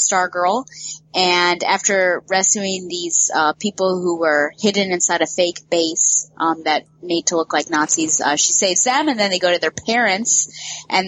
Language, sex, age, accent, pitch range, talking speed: English, female, 20-39, American, 160-210 Hz, 185 wpm